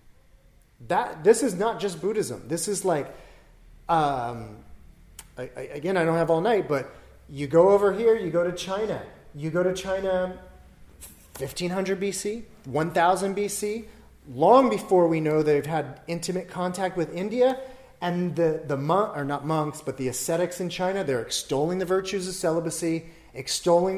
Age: 30-49